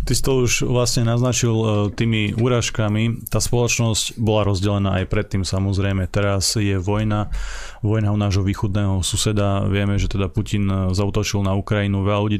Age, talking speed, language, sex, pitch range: 30-49, 160 wpm, Slovak, male, 100-110 Hz